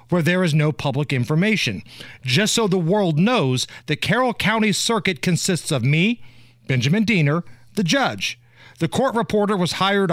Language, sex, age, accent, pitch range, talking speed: English, male, 40-59, American, 150-210 Hz, 160 wpm